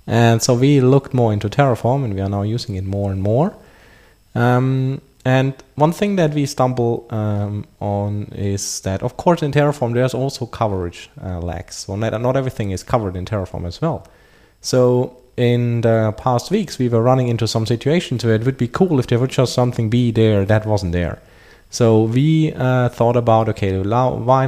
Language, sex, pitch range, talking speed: English, male, 105-130 Hz, 190 wpm